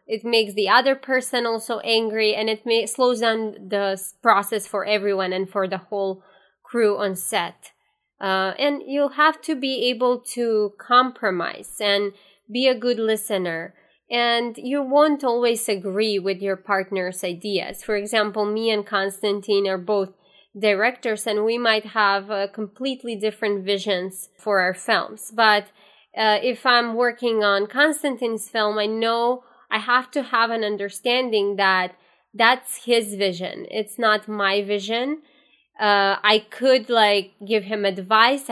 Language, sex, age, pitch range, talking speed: English, female, 20-39, 200-240 Hz, 150 wpm